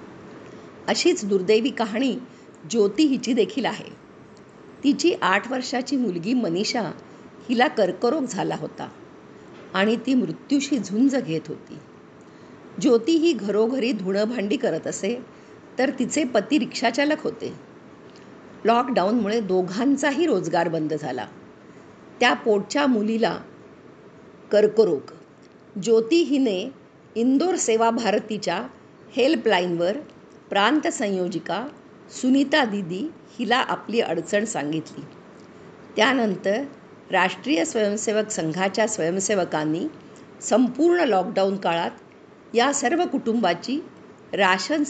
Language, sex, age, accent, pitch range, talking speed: Hindi, female, 50-69, native, 200-270 Hz, 85 wpm